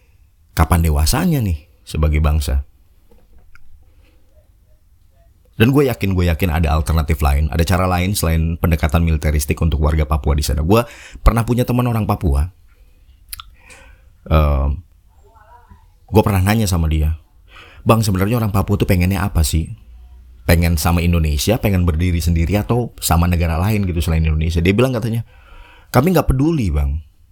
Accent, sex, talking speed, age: native, male, 140 wpm, 30-49